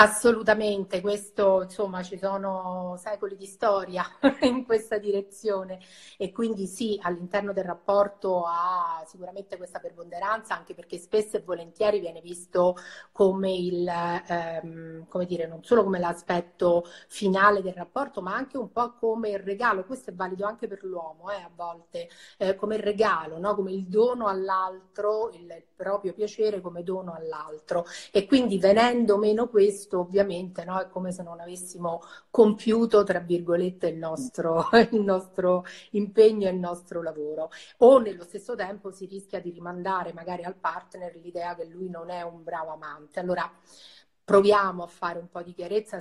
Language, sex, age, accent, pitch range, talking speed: Italian, female, 30-49, native, 175-205 Hz, 160 wpm